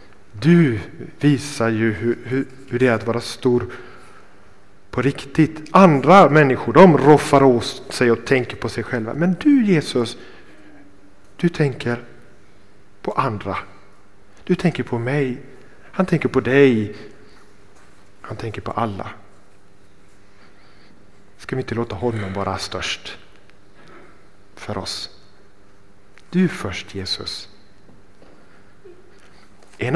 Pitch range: 100-140 Hz